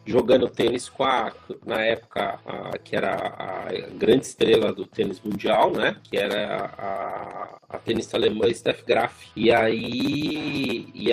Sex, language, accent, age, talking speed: male, Portuguese, Brazilian, 40-59, 150 wpm